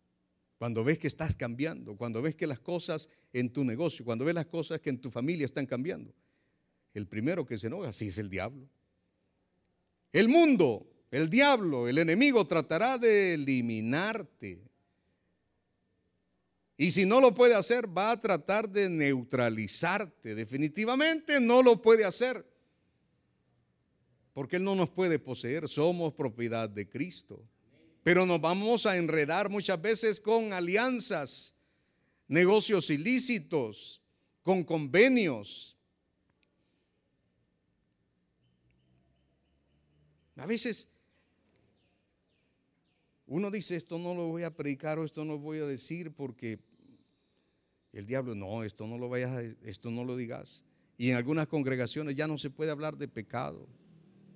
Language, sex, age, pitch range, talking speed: Spanish, male, 50-69, 115-185 Hz, 135 wpm